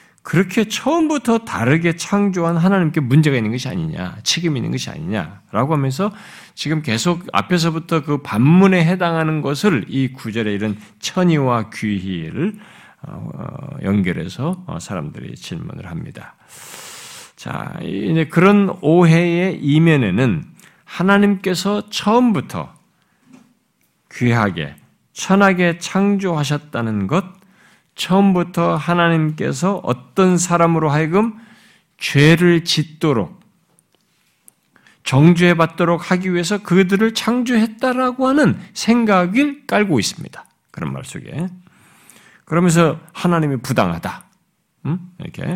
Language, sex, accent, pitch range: Korean, male, native, 145-195 Hz